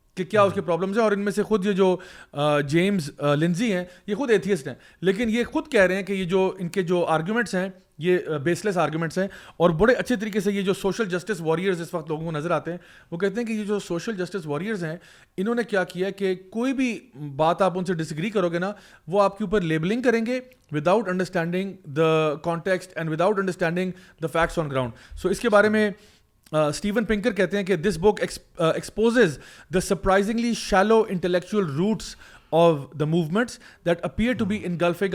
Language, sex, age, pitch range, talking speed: Urdu, male, 30-49, 170-205 Hz, 210 wpm